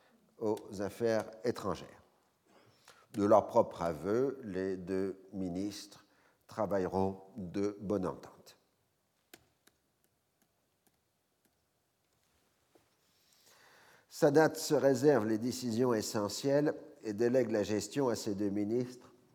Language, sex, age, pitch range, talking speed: French, male, 50-69, 105-125 Hz, 85 wpm